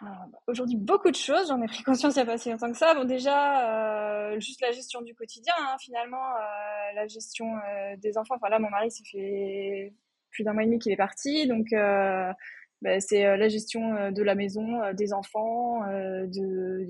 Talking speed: 215 wpm